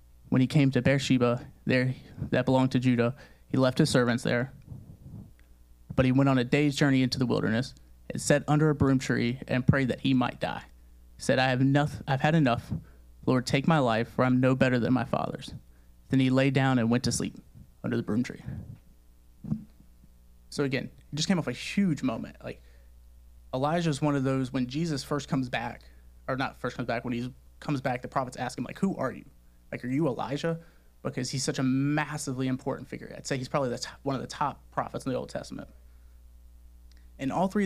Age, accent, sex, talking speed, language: 30-49, American, male, 215 wpm, English